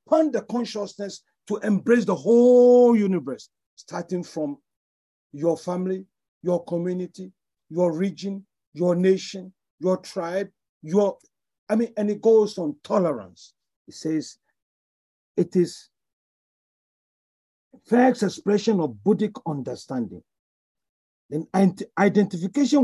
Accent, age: Nigerian, 50-69